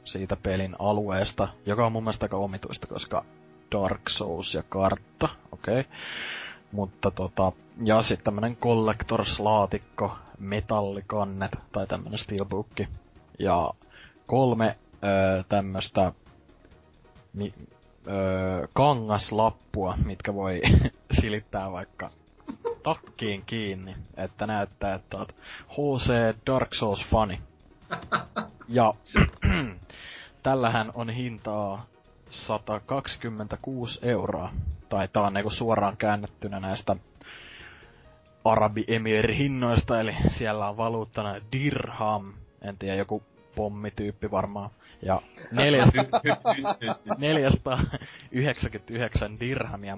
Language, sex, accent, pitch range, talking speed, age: Finnish, male, native, 95-115 Hz, 90 wpm, 20-39